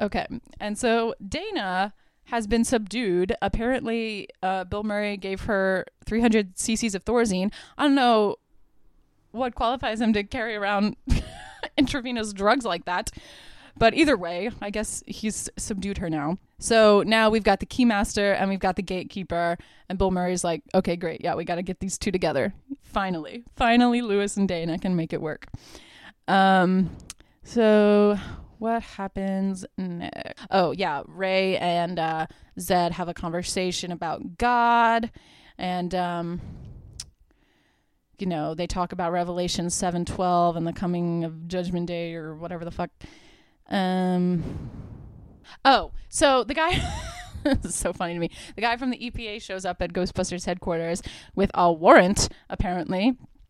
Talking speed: 150 wpm